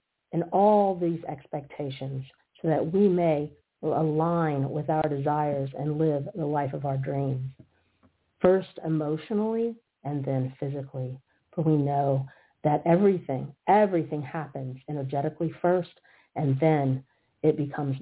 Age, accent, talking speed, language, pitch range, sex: 50-69, American, 125 wpm, English, 135-160 Hz, female